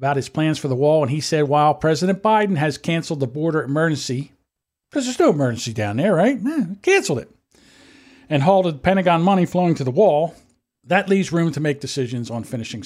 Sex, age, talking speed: male, 50-69, 200 wpm